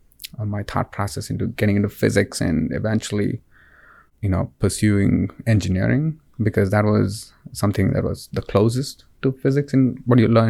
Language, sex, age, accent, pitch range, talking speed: English, male, 20-39, Indian, 105-125 Hz, 155 wpm